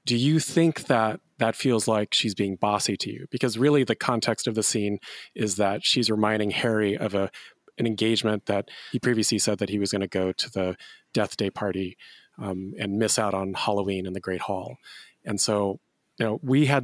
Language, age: English, 30-49